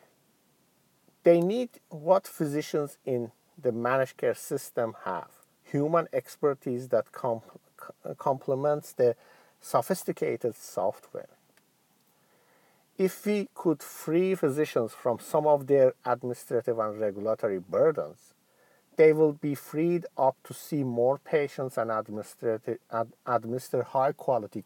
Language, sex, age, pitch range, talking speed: English, male, 50-69, 120-175 Hz, 100 wpm